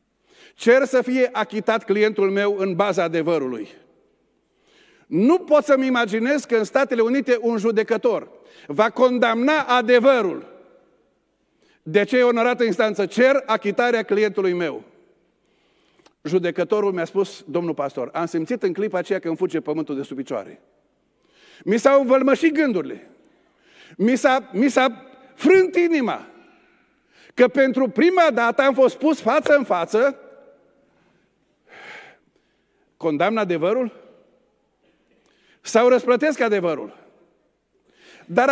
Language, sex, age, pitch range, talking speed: Romanian, male, 50-69, 215-295 Hz, 115 wpm